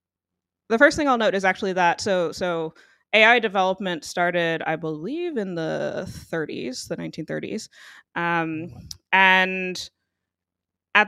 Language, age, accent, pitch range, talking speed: English, 20-39, American, 155-185 Hz, 125 wpm